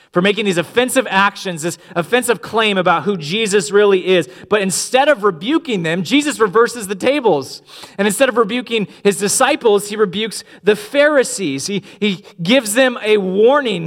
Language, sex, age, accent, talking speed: English, male, 30-49, American, 165 wpm